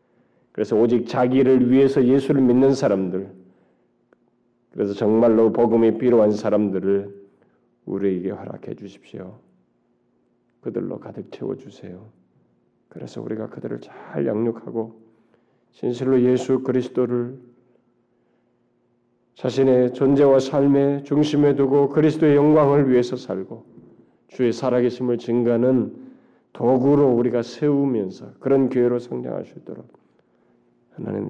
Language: Korean